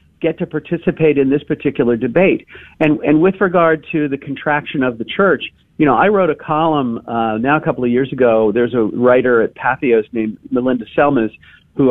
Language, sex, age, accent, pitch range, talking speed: English, male, 50-69, American, 120-160 Hz, 195 wpm